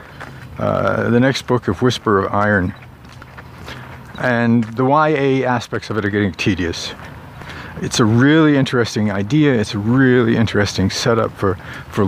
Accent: American